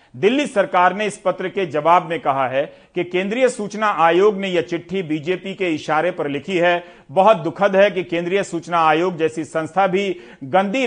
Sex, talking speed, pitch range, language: male, 190 wpm, 145-185 Hz, Hindi